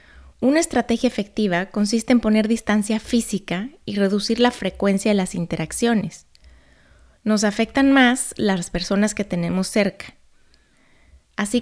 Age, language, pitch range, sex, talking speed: 20-39, Spanish, 180-235 Hz, female, 125 wpm